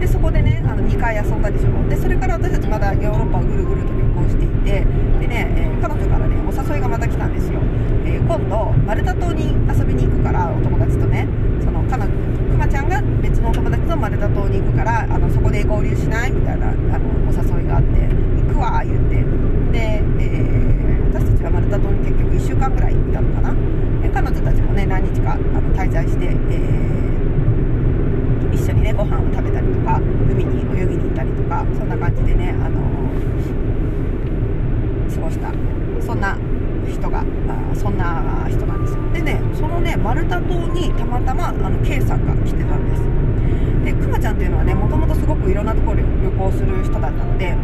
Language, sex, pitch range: Japanese, female, 115-125 Hz